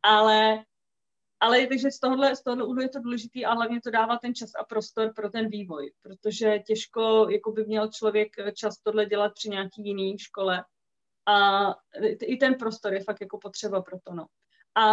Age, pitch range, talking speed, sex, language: 30-49, 195-225 Hz, 175 wpm, female, Czech